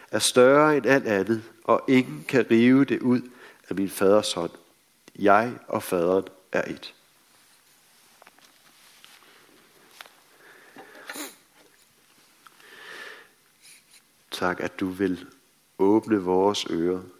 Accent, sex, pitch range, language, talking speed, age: native, male, 95-150 Hz, Danish, 95 wpm, 60-79